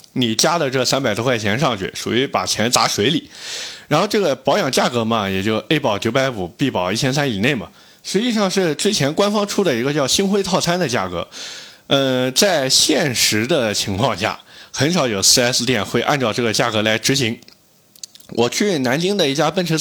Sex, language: male, Chinese